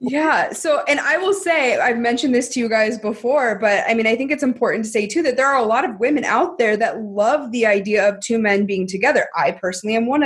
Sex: female